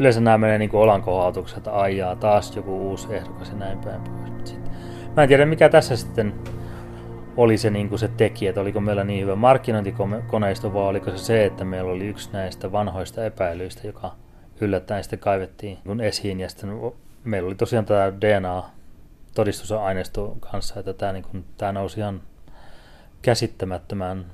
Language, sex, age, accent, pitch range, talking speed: Finnish, male, 30-49, native, 95-110 Hz, 165 wpm